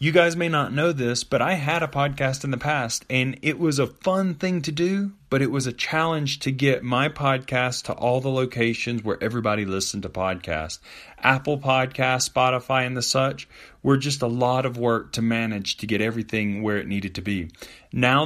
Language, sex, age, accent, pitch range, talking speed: English, male, 30-49, American, 120-150 Hz, 205 wpm